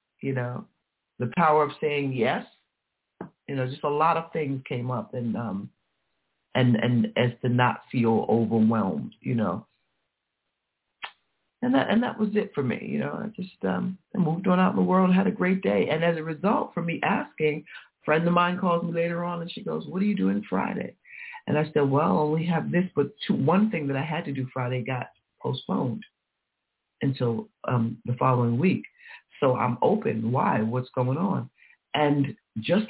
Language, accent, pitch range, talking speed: English, American, 130-195 Hz, 195 wpm